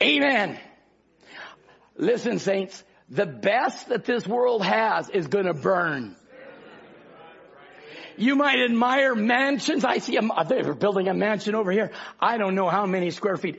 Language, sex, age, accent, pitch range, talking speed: English, male, 60-79, American, 205-325 Hz, 150 wpm